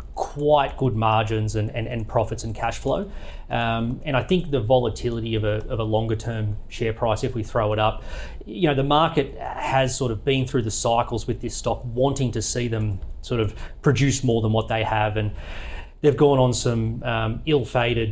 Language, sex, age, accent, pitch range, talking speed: English, male, 30-49, Australian, 110-145 Hz, 205 wpm